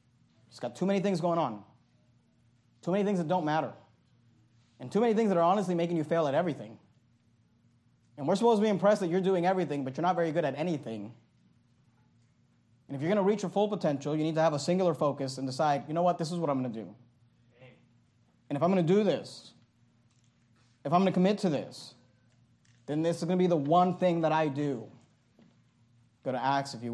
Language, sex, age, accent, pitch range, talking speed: English, male, 30-49, American, 120-185 Hz, 225 wpm